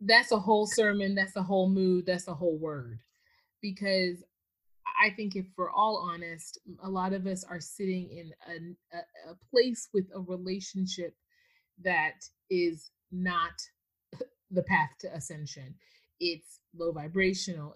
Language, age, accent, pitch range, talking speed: English, 30-49, American, 160-195 Hz, 140 wpm